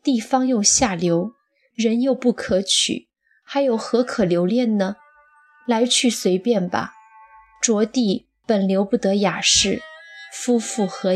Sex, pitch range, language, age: female, 195-255 Hz, Chinese, 20-39